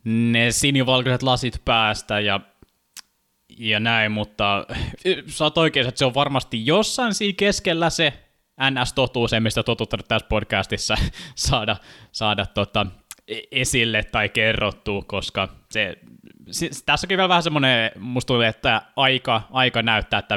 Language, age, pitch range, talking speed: Finnish, 20-39, 100-120 Hz, 120 wpm